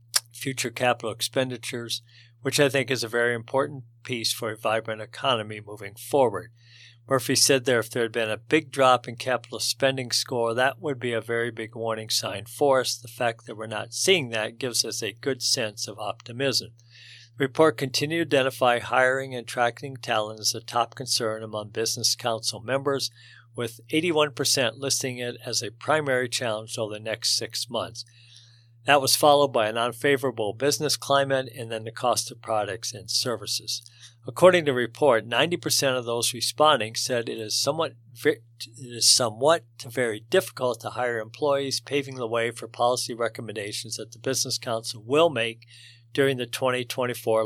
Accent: American